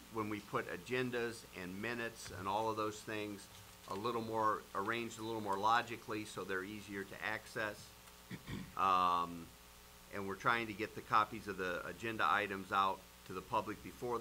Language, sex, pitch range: English, male, 90-110 Hz